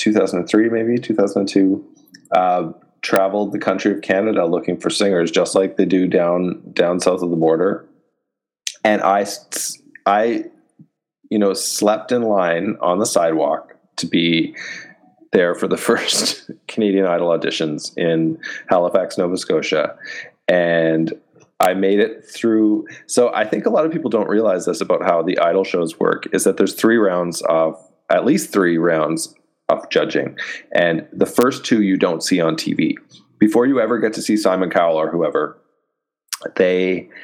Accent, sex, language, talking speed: American, male, English, 160 wpm